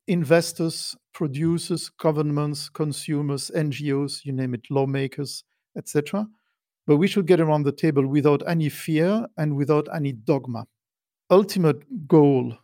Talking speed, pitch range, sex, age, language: 125 wpm, 140-170 Hz, male, 50-69, English